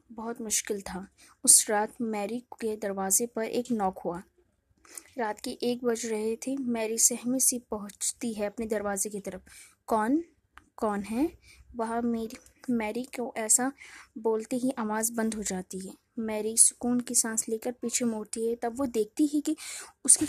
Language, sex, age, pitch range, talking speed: Hindi, female, 20-39, 215-260 Hz, 165 wpm